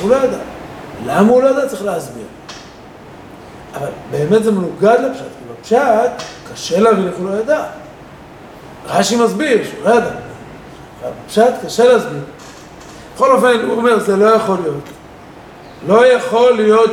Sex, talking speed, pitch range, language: male, 140 wpm, 195-235 Hz, Hebrew